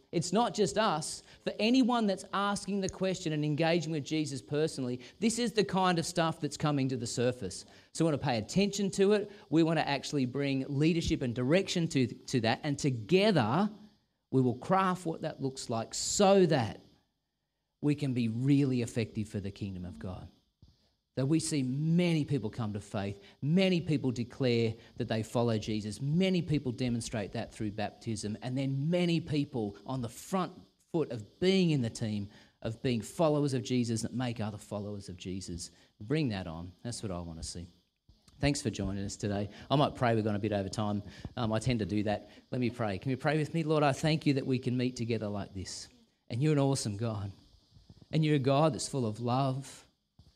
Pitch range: 110-155 Hz